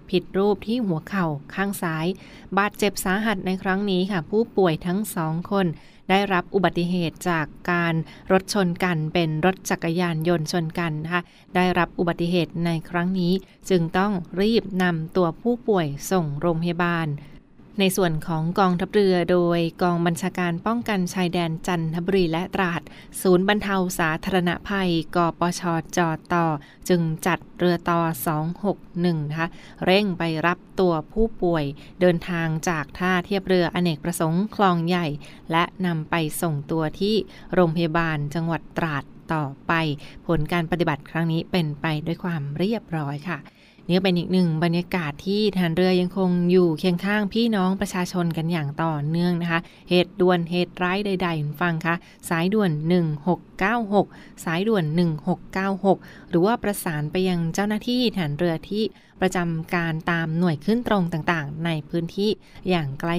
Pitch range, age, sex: 165-190 Hz, 20-39, female